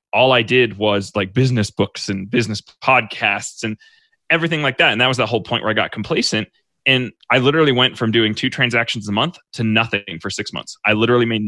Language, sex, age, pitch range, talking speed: English, male, 20-39, 105-125 Hz, 220 wpm